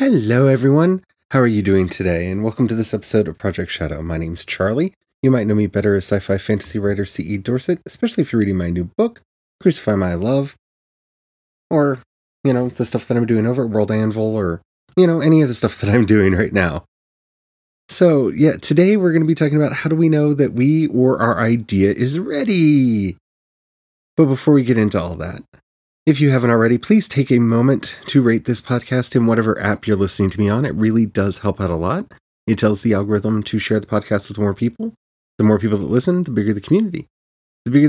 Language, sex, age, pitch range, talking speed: English, male, 30-49, 100-150 Hz, 220 wpm